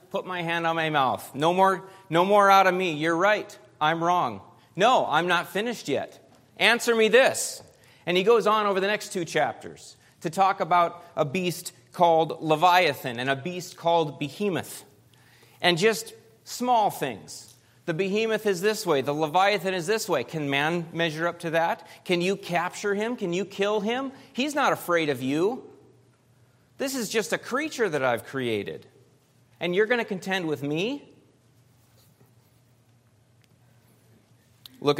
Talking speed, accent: 165 wpm, American